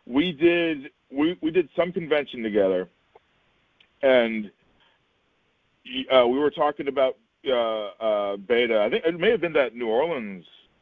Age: 40-59